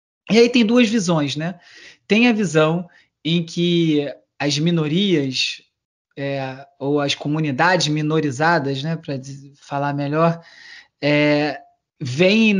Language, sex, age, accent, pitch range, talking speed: Portuguese, male, 20-39, Brazilian, 150-180 Hz, 105 wpm